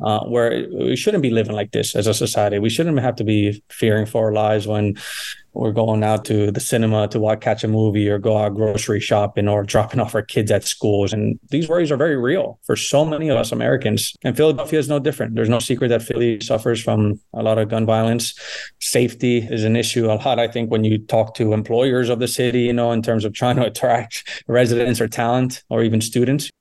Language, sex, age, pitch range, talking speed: English, male, 20-39, 110-120 Hz, 230 wpm